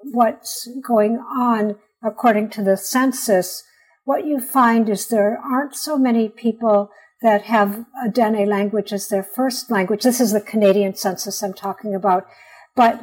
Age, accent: 60-79, American